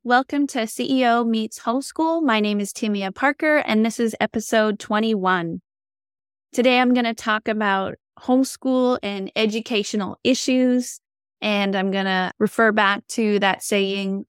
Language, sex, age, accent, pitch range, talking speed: English, female, 20-39, American, 190-230 Hz, 135 wpm